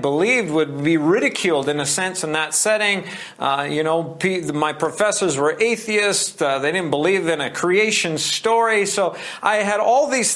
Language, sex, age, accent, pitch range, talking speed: English, male, 40-59, American, 170-230 Hz, 175 wpm